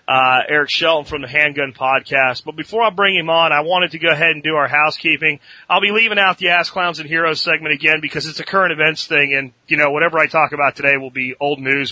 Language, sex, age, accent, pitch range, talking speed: English, male, 30-49, American, 135-175 Hz, 255 wpm